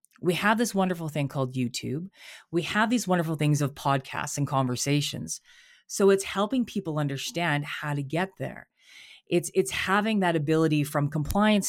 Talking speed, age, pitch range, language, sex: 165 wpm, 30-49, 150-195 Hz, English, female